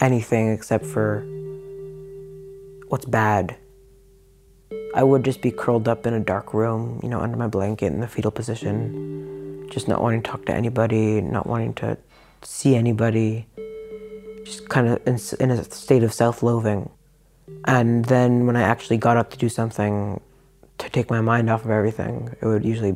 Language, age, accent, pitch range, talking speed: English, 20-39, American, 105-125 Hz, 165 wpm